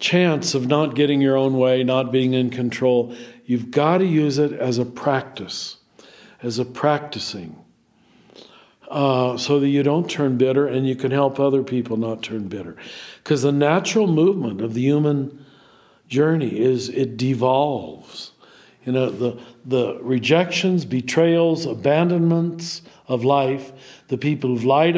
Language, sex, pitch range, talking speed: English, male, 125-150 Hz, 150 wpm